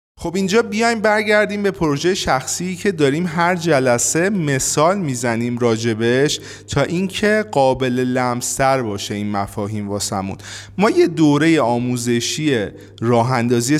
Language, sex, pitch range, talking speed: Persian, male, 115-155 Hz, 120 wpm